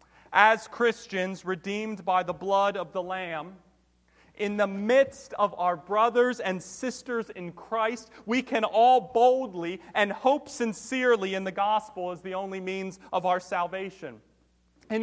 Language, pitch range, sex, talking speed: English, 195-255 Hz, male, 150 wpm